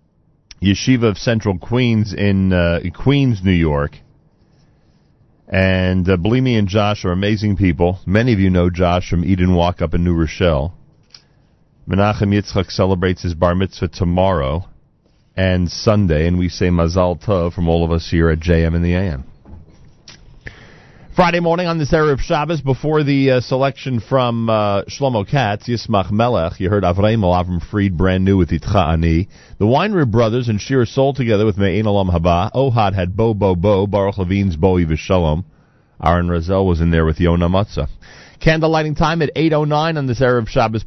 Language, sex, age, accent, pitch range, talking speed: English, male, 40-59, American, 90-120 Hz, 170 wpm